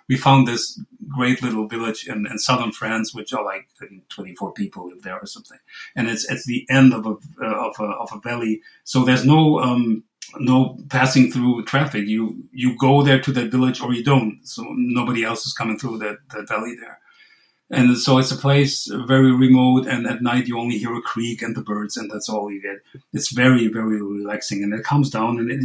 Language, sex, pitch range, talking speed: English, male, 120-150 Hz, 220 wpm